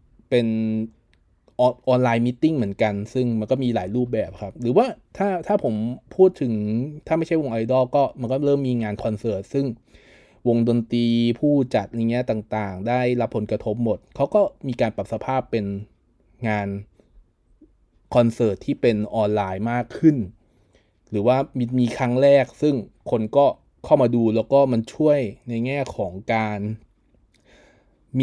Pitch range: 110-130 Hz